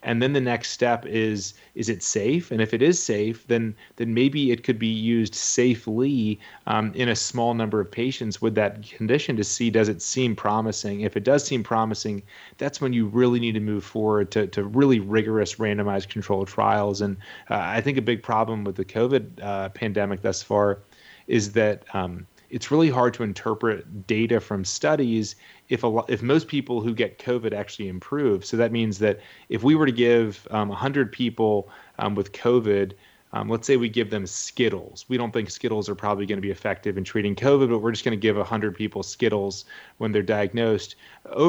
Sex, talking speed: male, 200 wpm